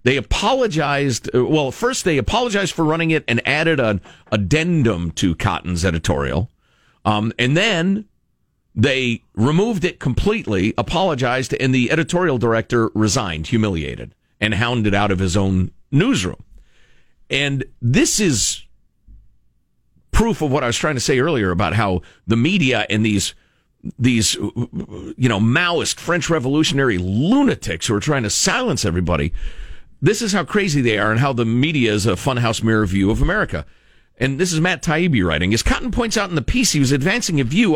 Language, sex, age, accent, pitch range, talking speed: English, male, 50-69, American, 105-170 Hz, 165 wpm